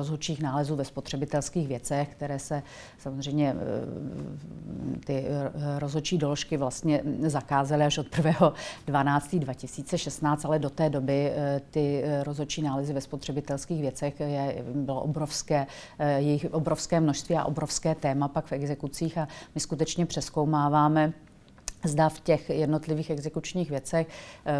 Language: Czech